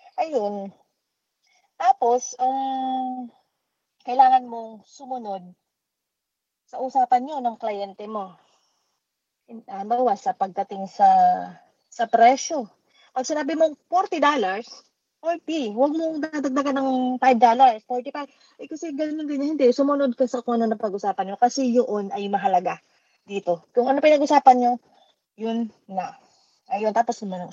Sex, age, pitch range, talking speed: female, 20-39, 225-305 Hz, 135 wpm